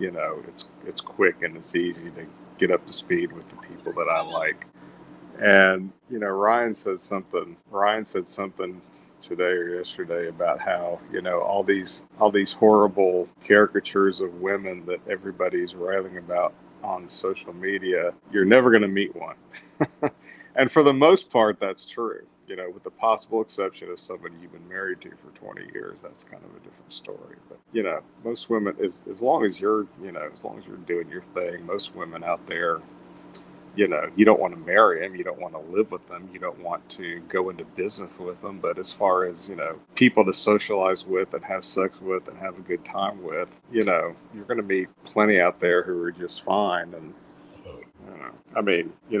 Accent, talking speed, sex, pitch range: American, 205 wpm, male, 90-105 Hz